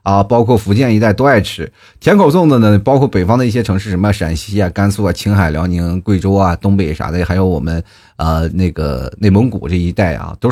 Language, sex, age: Chinese, male, 30-49